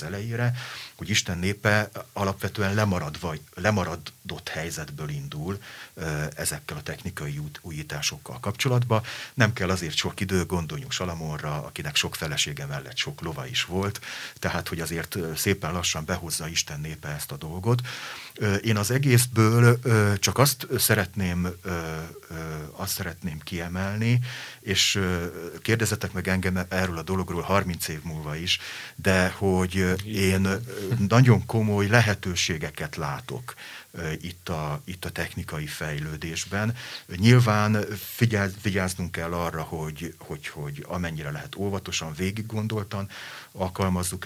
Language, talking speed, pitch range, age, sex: Hungarian, 115 wpm, 85-105 Hz, 40-59, male